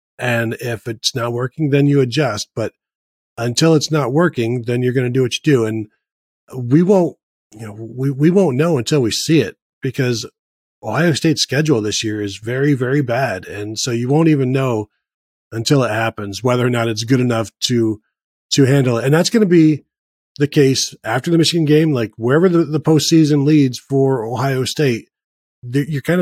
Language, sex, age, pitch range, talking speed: English, male, 40-59, 115-155 Hz, 195 wpm